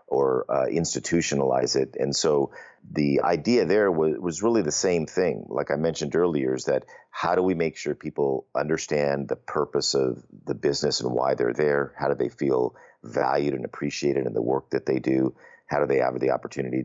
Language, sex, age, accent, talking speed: English, male, 50-69, American, 200 wpm